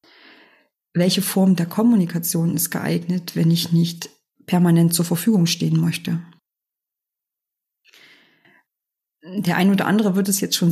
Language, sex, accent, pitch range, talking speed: German, female, German, 170-195 Hz, 125 wpm